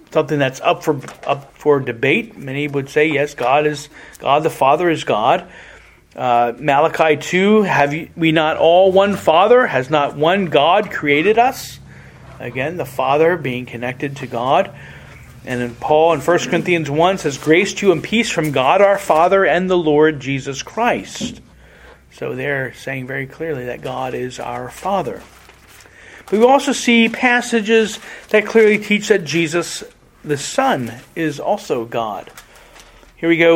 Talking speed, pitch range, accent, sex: 165 wpm, 145-200 Hz, American, male